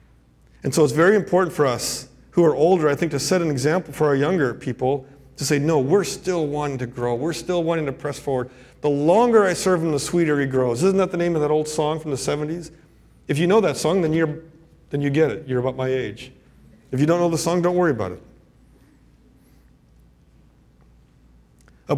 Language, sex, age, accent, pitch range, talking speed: English, male, 40-59, American, 115-155 Hz, 215 wpm